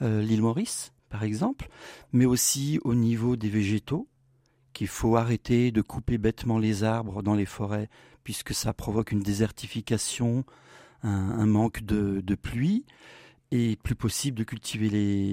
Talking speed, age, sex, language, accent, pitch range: 155 wpm, 50-69, male, French, French, 110-130 Hz